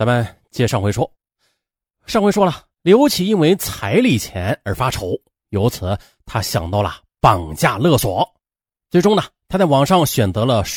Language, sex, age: Chinese, male, 30-49